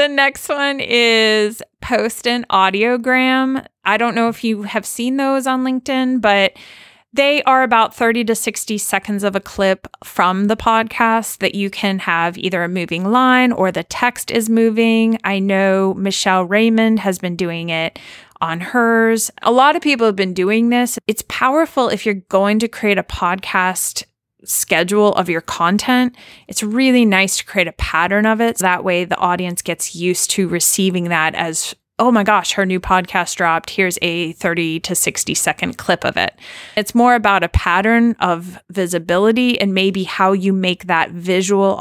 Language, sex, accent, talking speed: English, female, American, 180 wpm